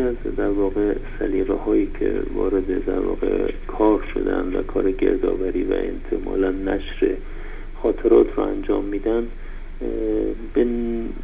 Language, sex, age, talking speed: Persian, male, 50-69, 105 wpm